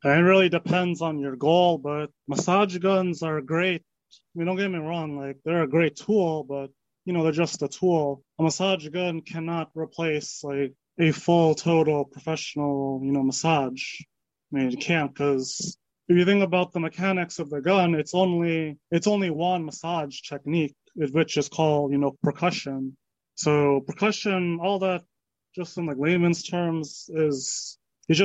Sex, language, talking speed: male, English, 170 wpm